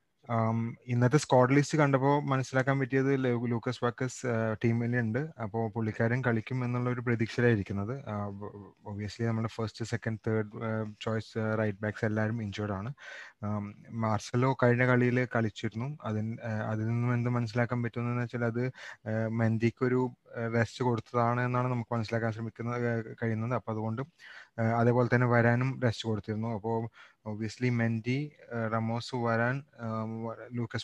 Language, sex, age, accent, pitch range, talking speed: Malayalam, male, 20-39, native, 110-125 Hz, 115 wpm